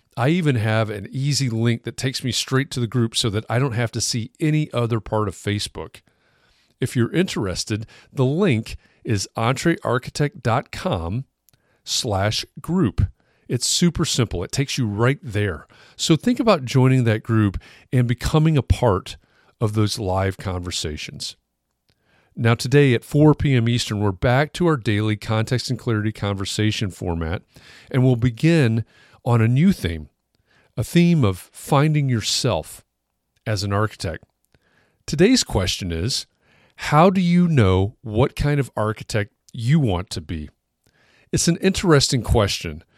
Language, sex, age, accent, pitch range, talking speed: English, male, 40-59, American, 105-135 Hz, 150 wpm